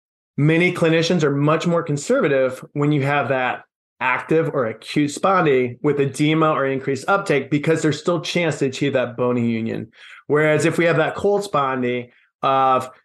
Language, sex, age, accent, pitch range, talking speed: English, male, 30-49, American, 130-160 Hz, 170 wpm